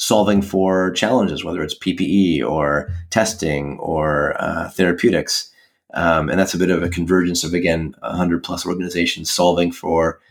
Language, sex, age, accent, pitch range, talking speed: English, male, 30-49, American, 85-95 Hz, 145 wpm